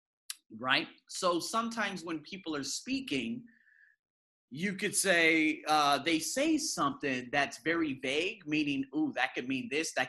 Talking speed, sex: 145 wpm, male